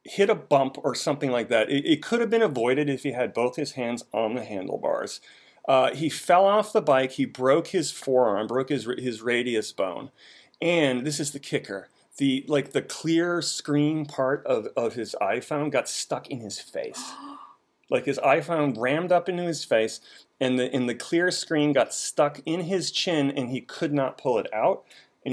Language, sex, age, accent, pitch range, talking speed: English, male, 30-49, American, 125-160 Hz, 200 wpm